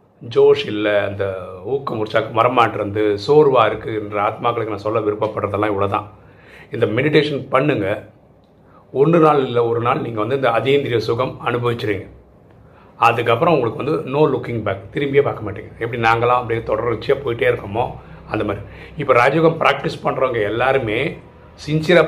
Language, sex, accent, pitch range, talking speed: Tamil, male, native, 110-160 Hz, 145 wpm